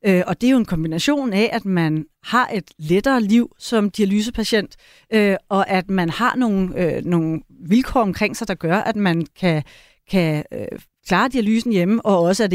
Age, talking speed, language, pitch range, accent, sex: 30-49, 170 wpm, Danish, 190-245 Hz, native, female